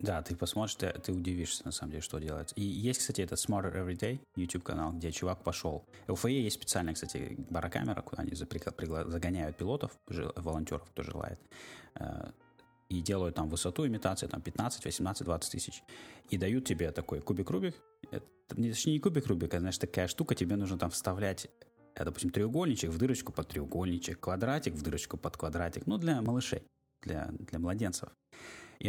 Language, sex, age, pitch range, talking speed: Russian, male, 20-39, 80-105 Hz, 175 wpm